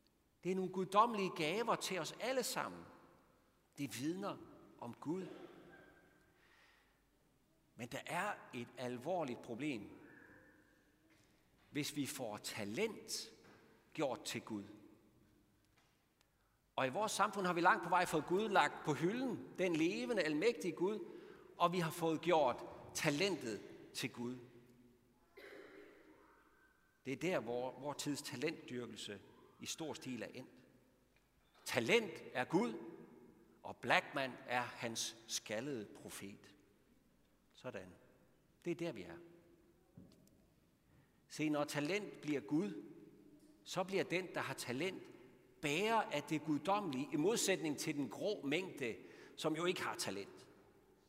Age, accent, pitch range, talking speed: 60-79, native, 125-185 Hz, 125 wpm